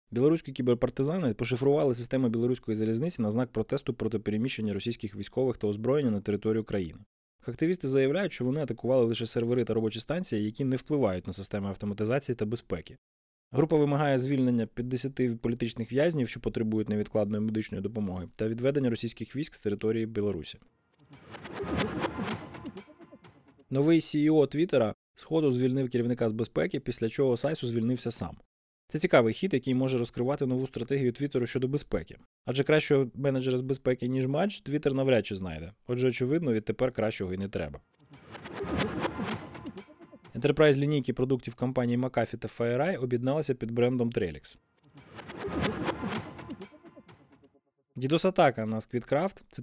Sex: male